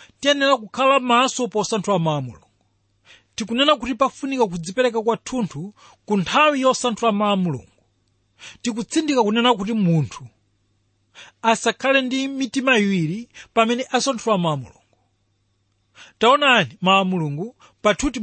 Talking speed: 95 wpm